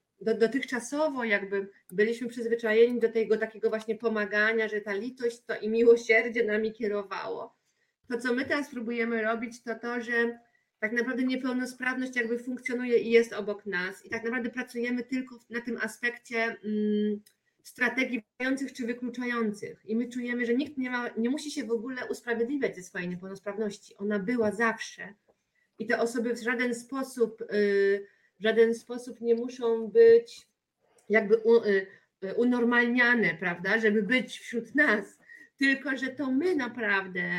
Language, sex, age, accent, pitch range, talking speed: Polish, female, 30-49, native, 215-255 Hz, 150 wpm